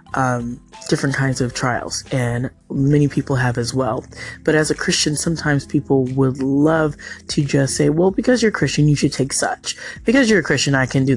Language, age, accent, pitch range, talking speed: English, 20-39, American, 130-150 Hz, 200 wpm